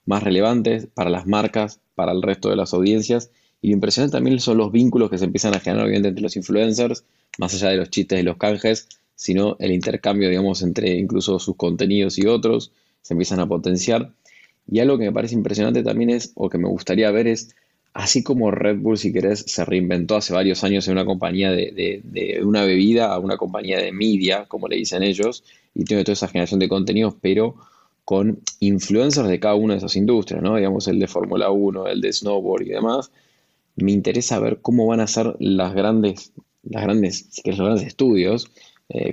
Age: 20-39